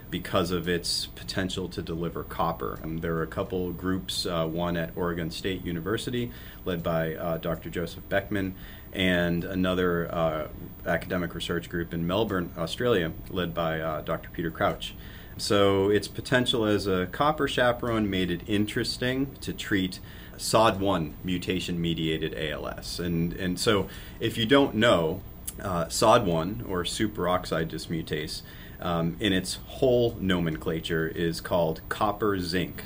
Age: 30-49